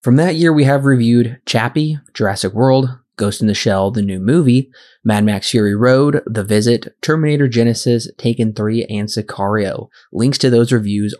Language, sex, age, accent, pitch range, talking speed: English, male, 20-39, American, 110-140 Hz, 170 wpm